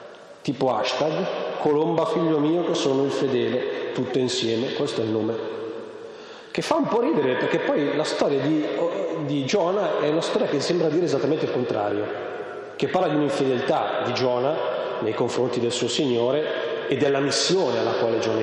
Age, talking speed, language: 30-49, 170 wpm, Italian